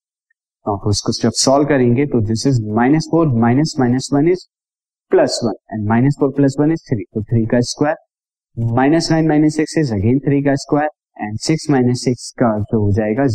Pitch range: 110-140 Hz